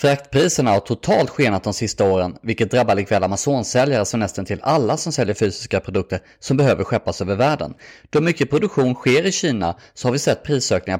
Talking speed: 190 wpm